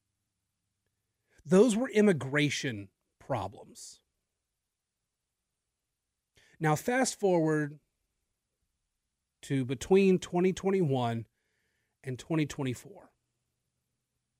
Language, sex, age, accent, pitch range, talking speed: English, male, 30-49, American, 120-170 Hz, 50 wpm